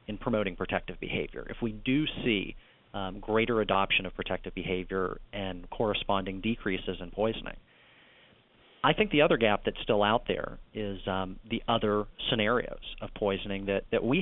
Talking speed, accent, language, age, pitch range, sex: 160 wpm, American, English, 40-59, 100-120 Hz, male